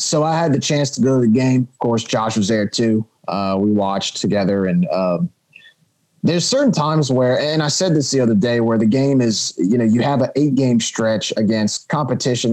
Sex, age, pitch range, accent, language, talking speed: male, 30-49, 110-135 Hz, American, English, 220 wpm